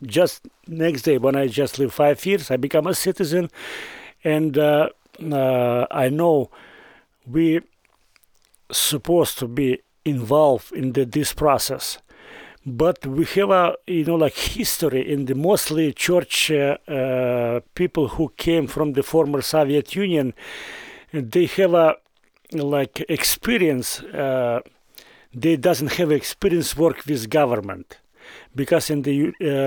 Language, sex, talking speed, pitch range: English, male, 135 wpm, 140-170 Hz